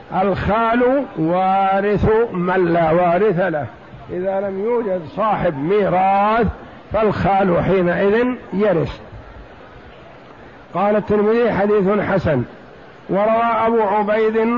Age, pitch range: 60-79, 180-220 Hz